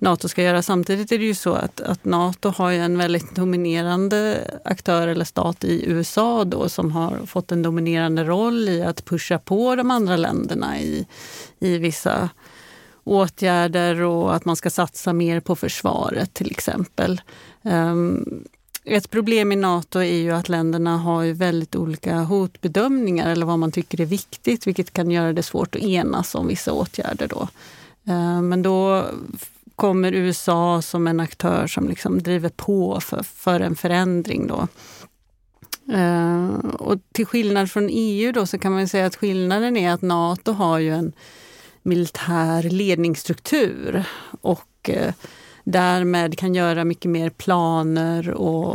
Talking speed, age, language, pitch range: 150 wpm, 30-49, Swedish, 170-190 Hz